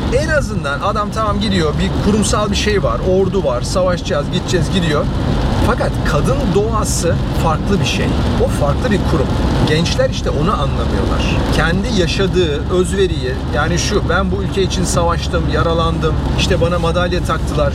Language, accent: Turkish, native